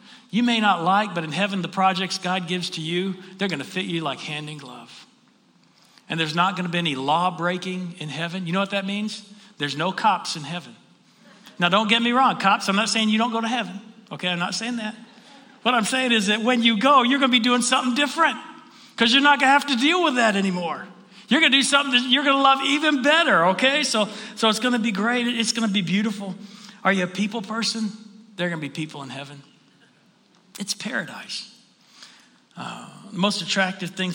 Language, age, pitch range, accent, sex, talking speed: English, 50-69, 160-220 Hz, American, male, 235 wpm